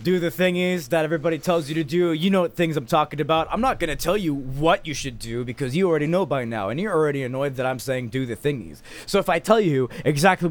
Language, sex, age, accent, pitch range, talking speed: English, male, 20-39, American, 120-155 Hz, 270 wpm